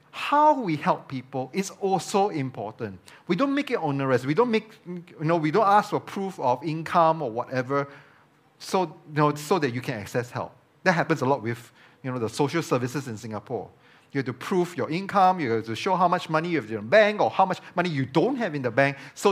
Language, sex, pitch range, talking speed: English, male, 135-180 Hz, 235 wpm